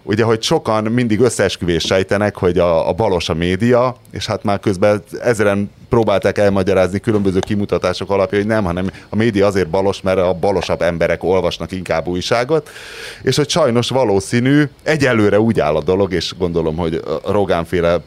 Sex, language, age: male, Hungarian, 30-49